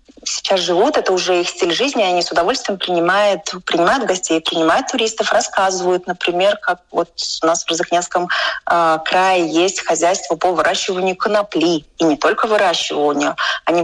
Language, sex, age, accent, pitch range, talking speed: Russian, female, 30-49, native, 170-215 Hz, 145 wpm